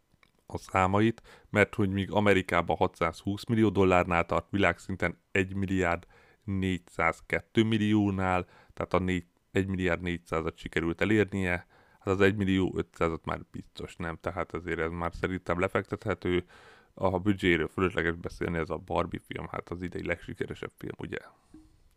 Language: Hungarian